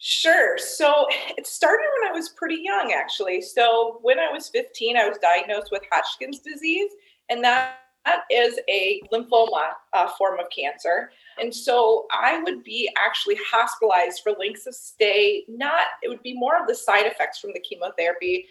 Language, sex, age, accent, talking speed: English, female, 30-49, American, 175 wpm